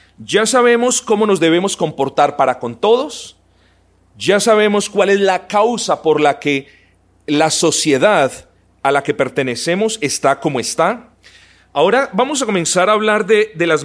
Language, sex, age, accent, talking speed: Spanish, male, 40-59, Colombian, 155 wpm